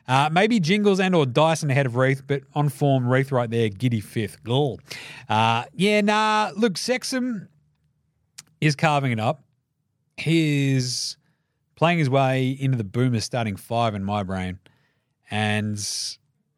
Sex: male